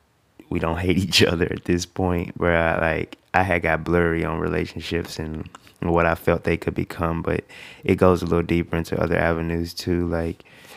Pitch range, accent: 80-90 Hz, American